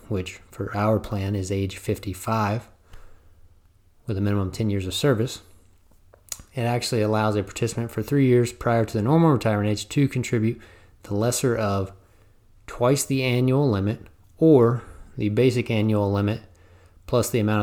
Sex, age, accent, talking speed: male, 30-49, American, 155 wpm